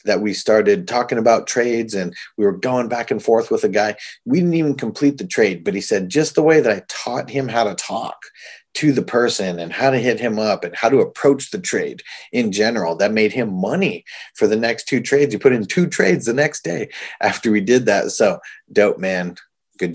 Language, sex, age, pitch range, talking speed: English, male, 30-49, 100-135 Hz, 230 wpm